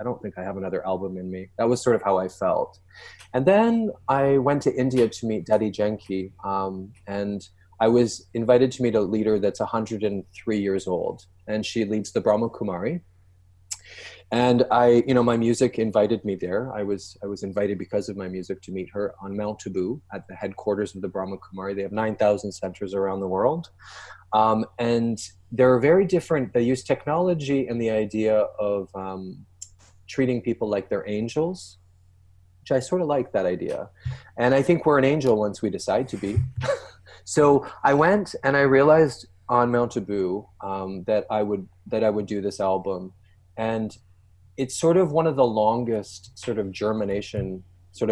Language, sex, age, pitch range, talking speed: English, male, 20-39, 95-120 Hz, 185 wpm